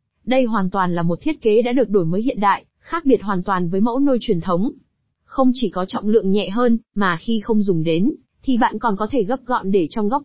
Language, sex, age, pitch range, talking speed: Vietnamese, female, 20-39, 200-255 Hz, 260 wpm